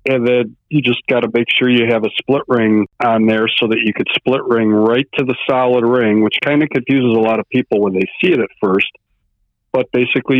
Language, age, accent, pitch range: English, 50-69, American, 100-120 Hz